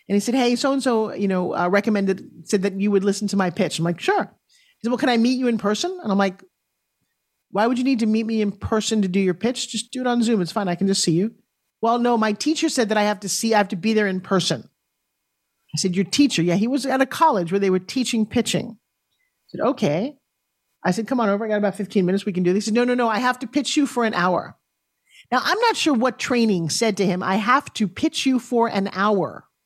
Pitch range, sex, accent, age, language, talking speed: 200-255 Hz, male, American, 40-59, English, 275 wpm